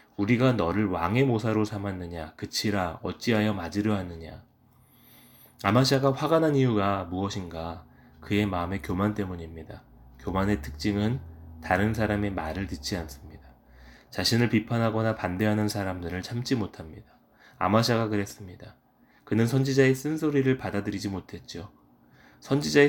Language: Korean